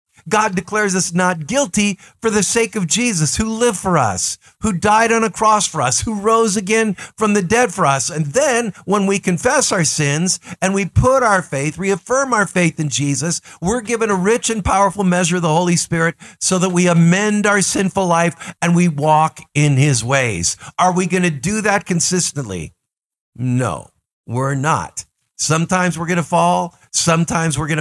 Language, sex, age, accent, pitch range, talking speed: English, male, 50-69, American, 140-180 Hz, 190 wpm